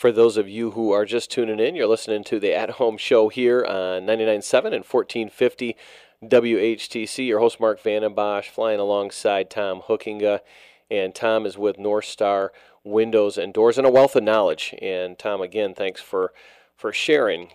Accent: American